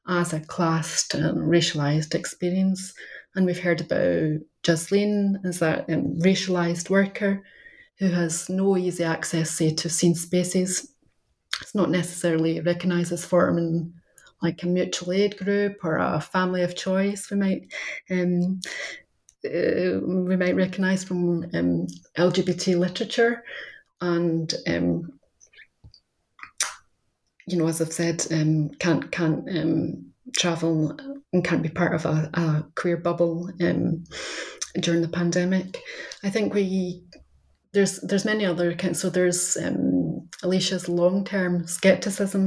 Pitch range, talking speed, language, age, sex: 170-185 Hz, 130 wpm, English, 30-49, female